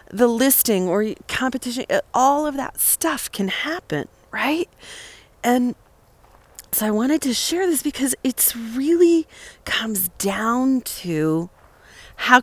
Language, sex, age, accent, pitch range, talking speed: English, female, 40-59, American, 190-270 Hz, 120 wpm